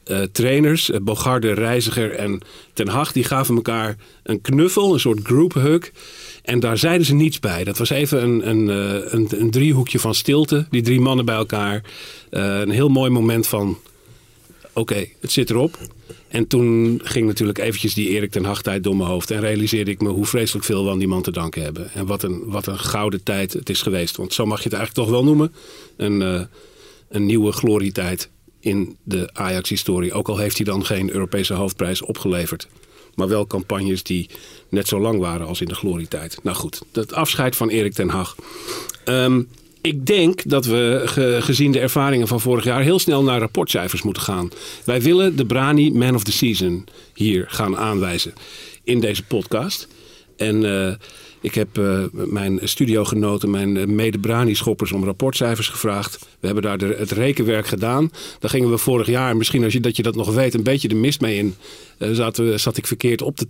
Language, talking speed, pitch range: Dutch, 190 wpm, 100-125 Hz